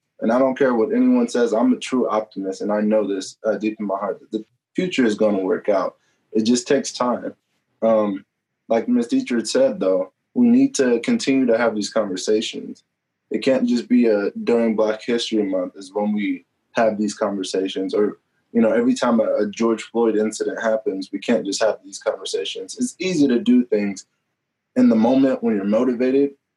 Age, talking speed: 20-39, 200 wpm